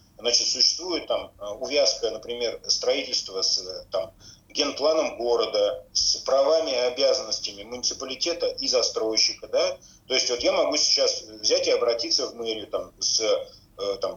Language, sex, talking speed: Russian, male, 135 wpm